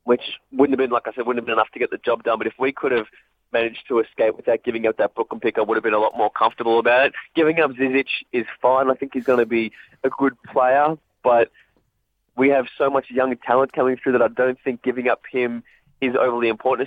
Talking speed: 265 wpm